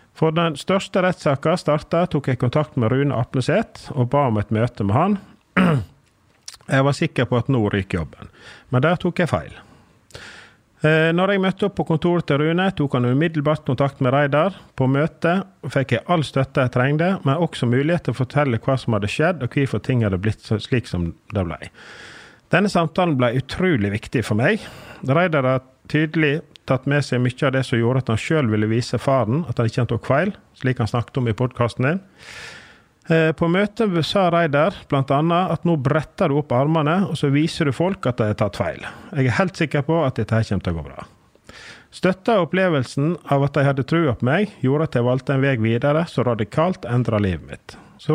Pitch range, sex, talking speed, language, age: 125-165 Hz, male, 200 wpm, English, 40-59